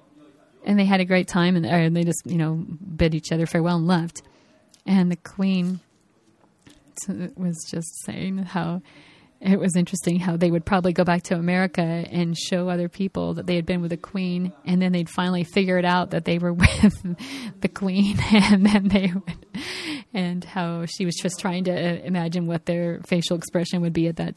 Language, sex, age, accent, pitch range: Japanese, female, 30-49, American, 170-195 Hz